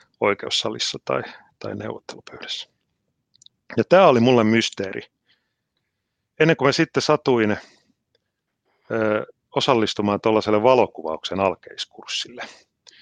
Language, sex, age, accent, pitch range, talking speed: Finnish, male, 30-49, native, 90-115 Hz, 85 wpm